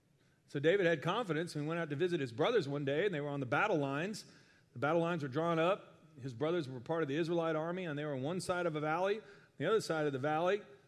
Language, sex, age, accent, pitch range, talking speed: English, male, 40-59, American, 145-175 Hz, 275 wpm